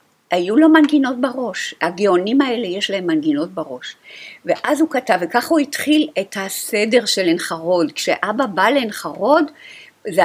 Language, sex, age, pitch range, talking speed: Hebrew, female, 50-69, 185-285 Hz, 140 wpm